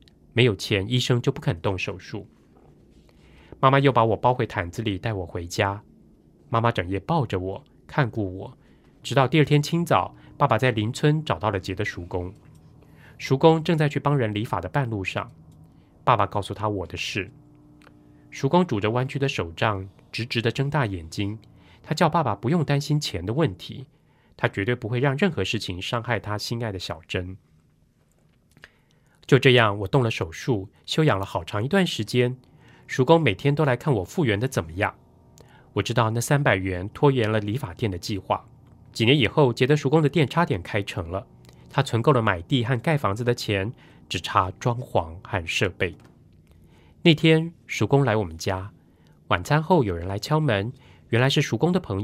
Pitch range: 100-140 Hz